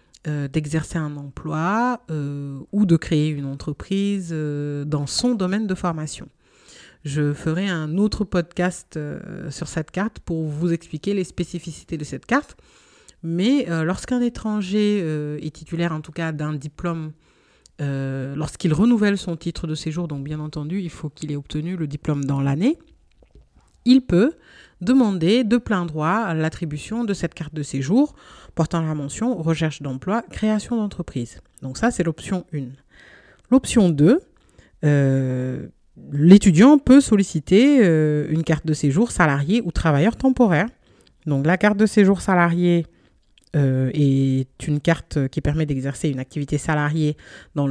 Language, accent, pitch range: French, French, 150-200 Hz